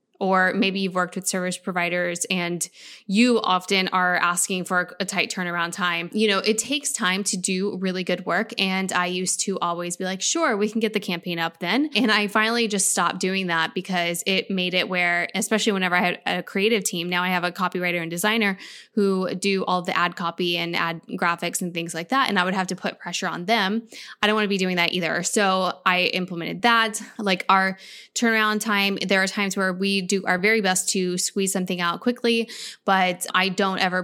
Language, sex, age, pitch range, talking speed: English, female, 10-29, 180-205 Hz, 220 wpm